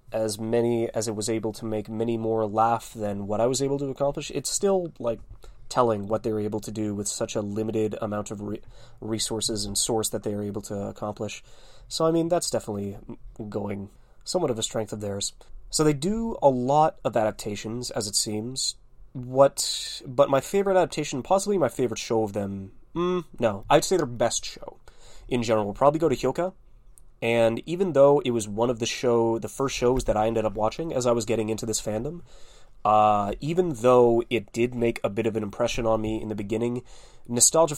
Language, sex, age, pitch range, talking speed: English, male, 20-39, 110-130 Hz, 205 wpm